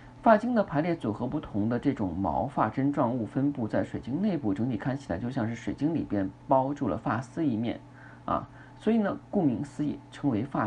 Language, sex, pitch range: Chinese, male, 110-150 Hz